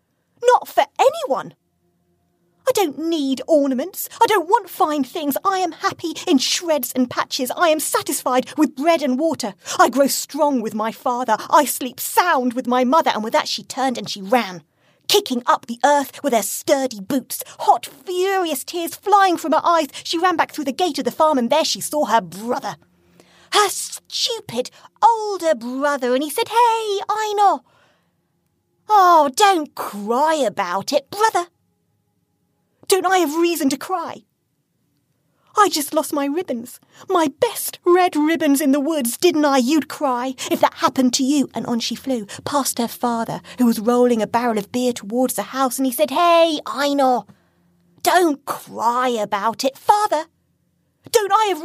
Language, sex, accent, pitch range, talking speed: English, female, British, 250-350 Hz, 170 wpm